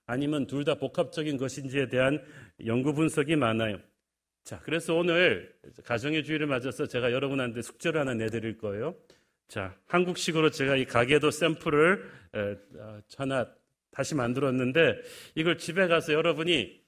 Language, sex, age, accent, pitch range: Korean, male, 40-59, native, 125-160 Hz